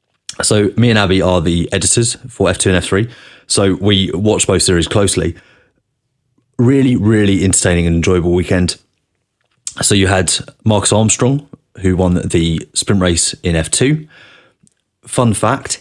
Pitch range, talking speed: 90-110 Hz, 140 wpm